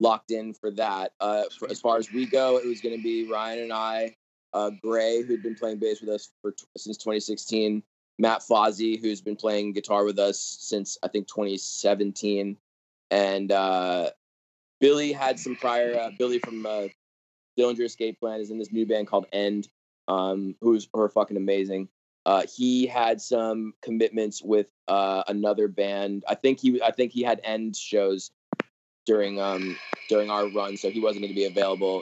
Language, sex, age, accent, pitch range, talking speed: English, male, 20-39, American, 95-110 Hz, 185 wpm